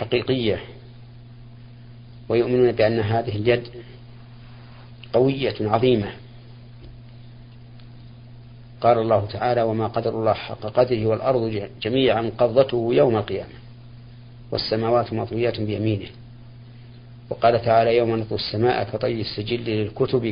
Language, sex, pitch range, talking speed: Arabic, male, 115-120 Hz, 90 wpm